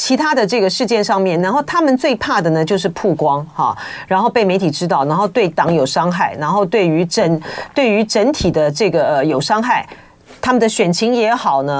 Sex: female